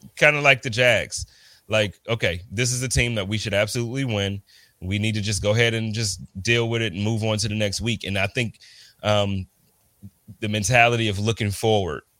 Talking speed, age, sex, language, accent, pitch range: 210 wpm, 30-49, male, English, American, 105-125 Hz